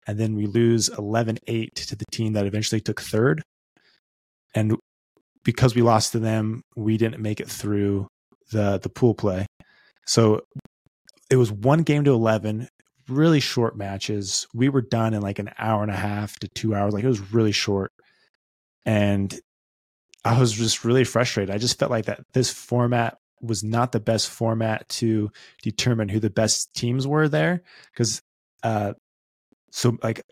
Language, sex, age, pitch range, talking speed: English, male, 20-39, 105-125 Hz, 170 wpm